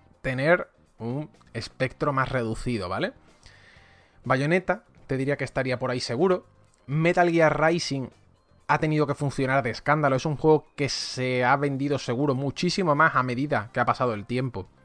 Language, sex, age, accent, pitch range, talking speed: English, male, 20-39, Spanish, 115-150 Hz, 160 wpm